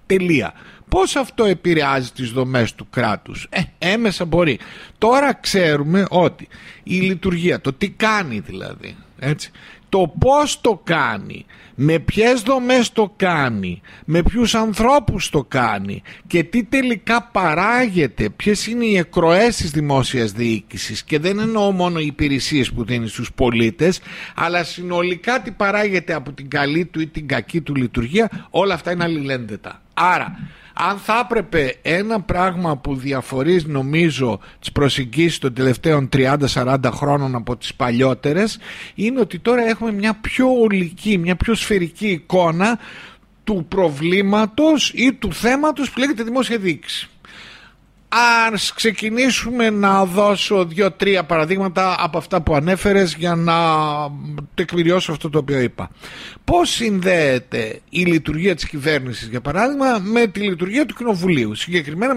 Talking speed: 135 wpm